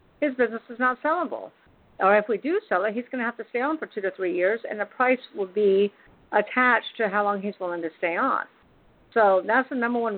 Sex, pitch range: female, 190-245 Hz